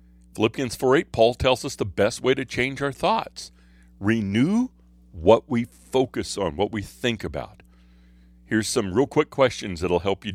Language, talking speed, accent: English, 180 wpm, American